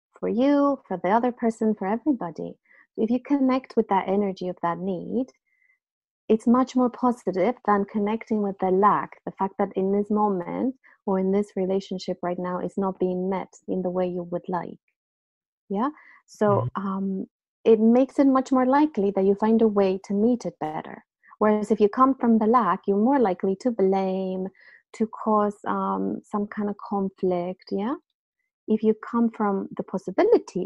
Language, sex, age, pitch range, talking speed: English, female, 30-49, 185-235 Hz, 180 wpm